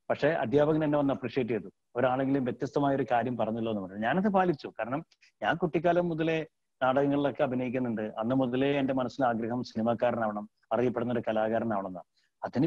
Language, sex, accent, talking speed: Malayalam, male, native, 145 wpm